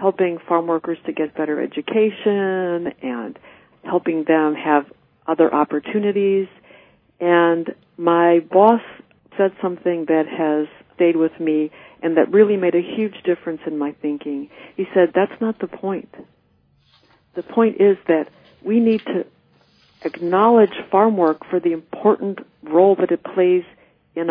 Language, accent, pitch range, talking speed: English, American, 170-210 Hz, 140 wpm